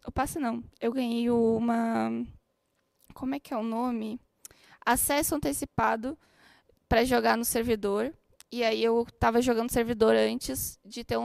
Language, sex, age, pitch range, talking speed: Portuguese, female, 10-29, 225-255 Hz, 150 wpm